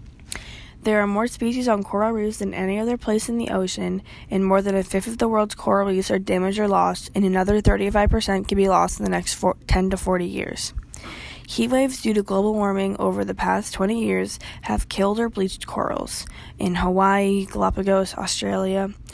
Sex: female